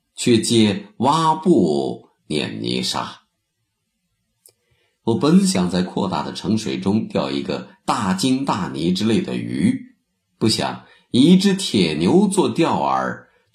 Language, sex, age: Chinese, male, 50-69